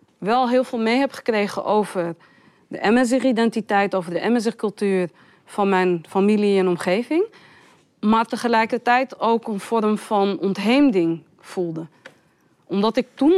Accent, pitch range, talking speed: Dutch, 185-255 Hz, 125 wpm